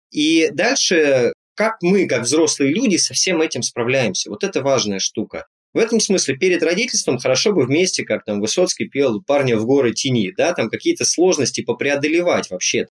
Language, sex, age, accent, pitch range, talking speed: Russian, male, 20-39, native, 120-180 Hz, 170 wpm